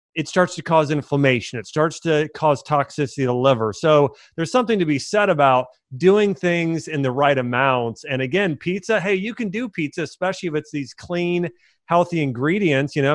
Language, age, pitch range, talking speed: English, 30-49, 130-165 Hz, 195 wpm